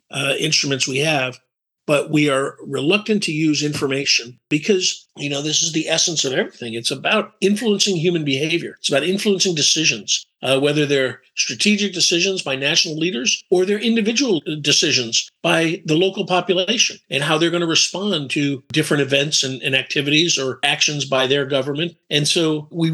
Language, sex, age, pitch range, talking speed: English, male, 50-69, 135-170 Hz, 165 wpm